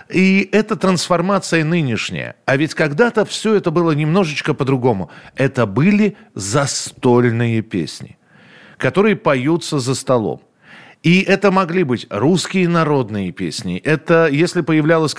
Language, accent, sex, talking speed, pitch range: Russian, native, male, 120 wpm, 110-150 Hz